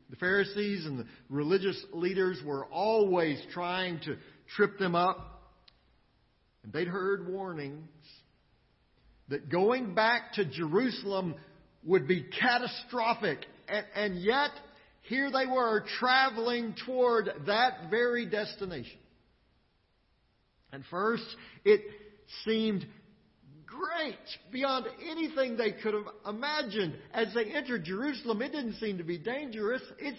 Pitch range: 135-230 Hz